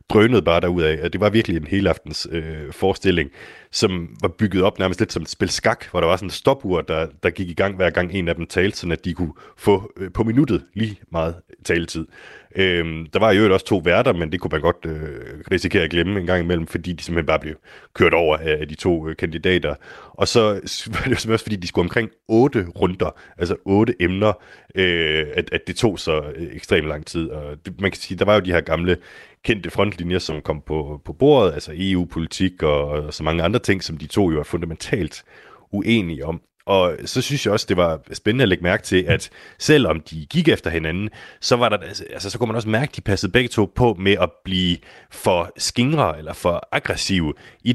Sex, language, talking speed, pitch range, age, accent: male, Danish, 230 wpm, 80-105 Hz, 30-49, native